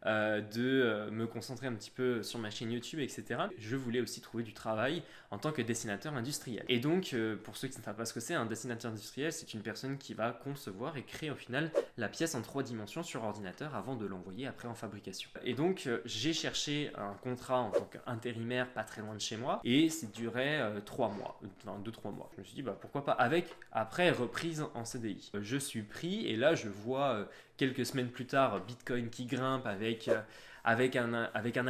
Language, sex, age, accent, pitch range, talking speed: French, male, 20-39, French, 110-135 Hz, 230 wpm